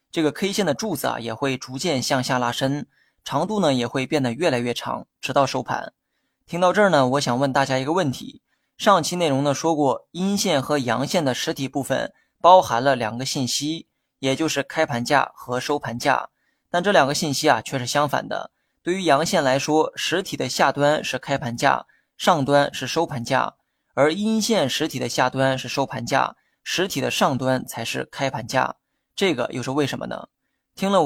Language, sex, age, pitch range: Chinese, male, 20-39, 130-160 Hz